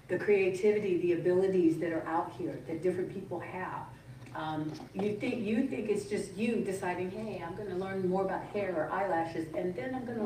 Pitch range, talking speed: 180-210 Hz, 200 wpm